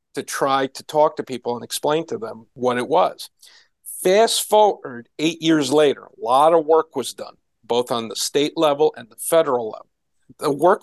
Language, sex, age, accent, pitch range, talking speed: English, male, 50-69, American, 145-190 Hz, 195 wpm